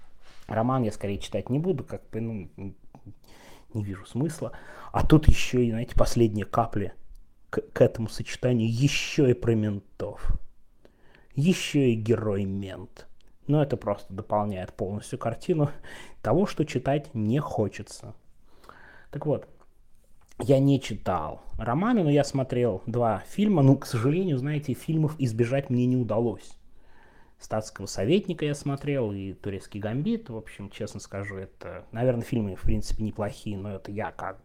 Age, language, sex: 20-39, Russian, male